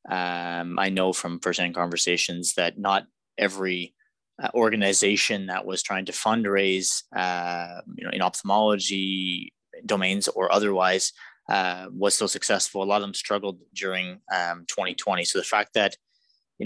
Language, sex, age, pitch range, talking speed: English, male, 20-39, 95-110 Hz, 150 wpm